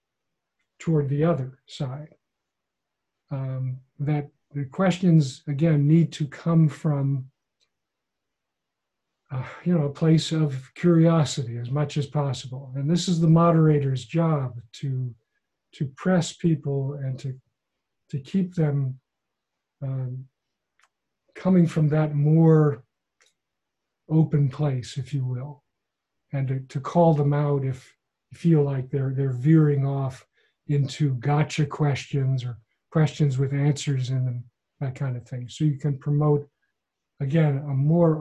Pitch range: 135-160 Hz